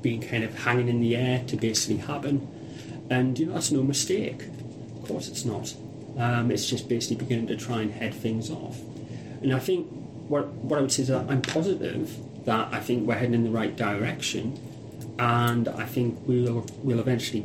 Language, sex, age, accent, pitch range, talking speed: English, male, 30-49, British, 110-130 Hz, 200 wpm